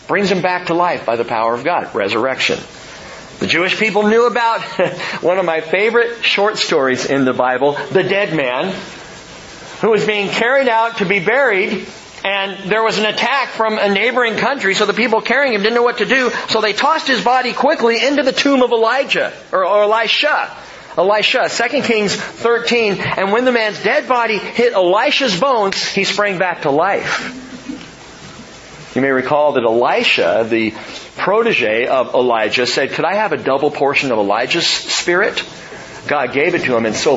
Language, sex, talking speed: English, male, 180 wpm